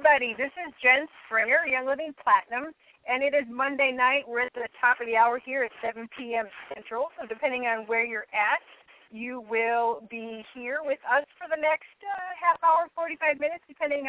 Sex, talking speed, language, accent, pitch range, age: female, 190 wpm, English, American, 215-275 Hz, 30-49